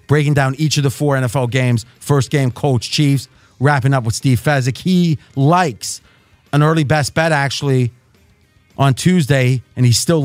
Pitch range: 125-175 Hz